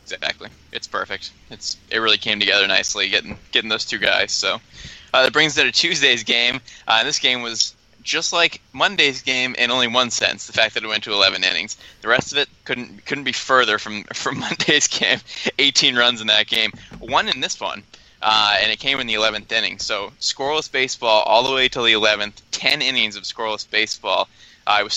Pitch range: 105-120 Hz